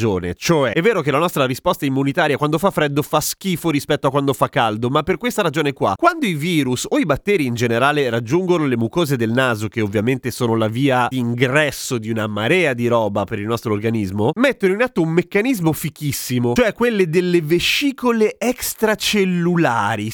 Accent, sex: native, male